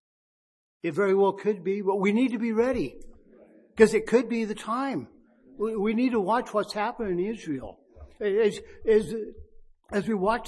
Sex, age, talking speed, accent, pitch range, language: male, 60-79, 165 wpm, American, 185-230 Hz, English